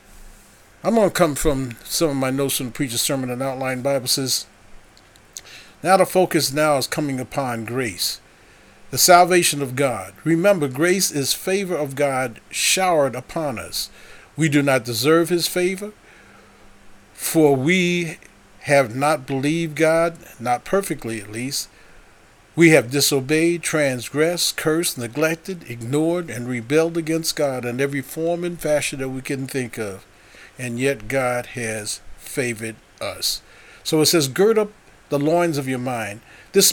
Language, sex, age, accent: English, male, 40-59, American